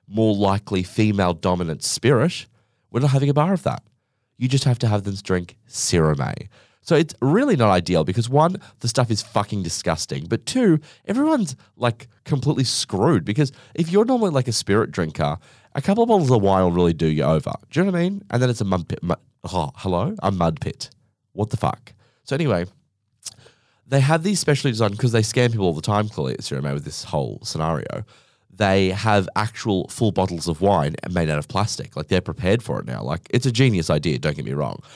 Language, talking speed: English, 215 wpm